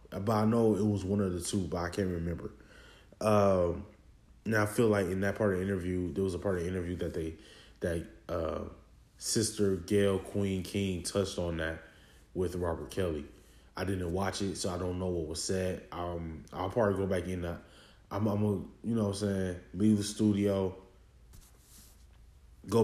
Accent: American